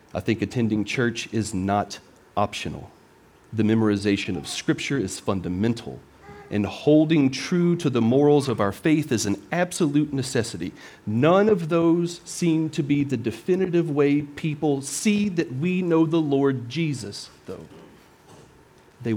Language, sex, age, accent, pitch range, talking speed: English, male, 40-59, American, 110-155 Hz, 140 wpm